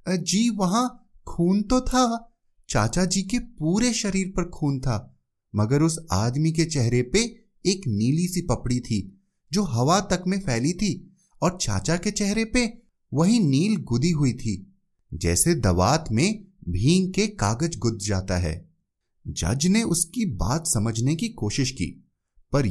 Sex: male